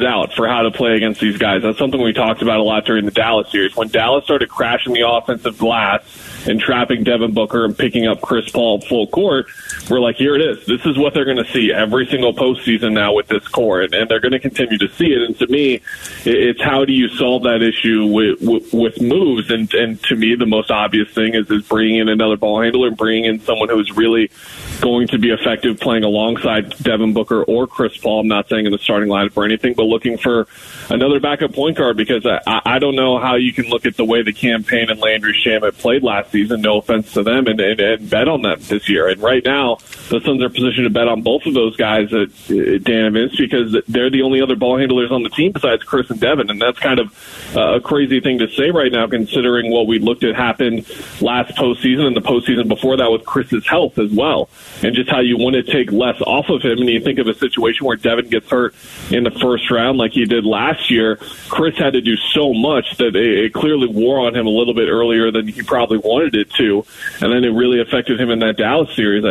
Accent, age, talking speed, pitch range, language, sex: American, 20-39, 240 wpm, 110-125 Hz, English, male